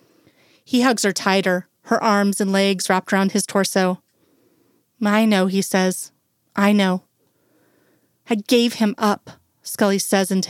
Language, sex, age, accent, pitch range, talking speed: English, female, 30-49, American, 195-220 Hz, 145 wpm